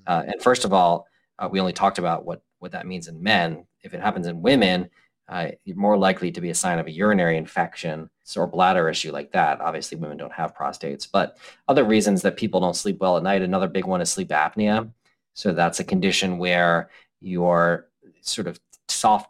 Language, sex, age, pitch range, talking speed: English, male, 30-49, 85-100 Hz, 210 wpm